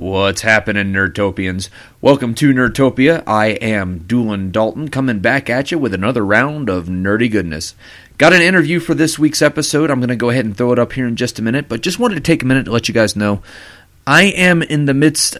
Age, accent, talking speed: 30-49, American, 225 wpm